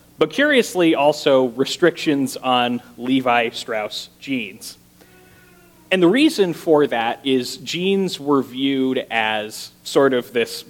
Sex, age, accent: male, 30-49, American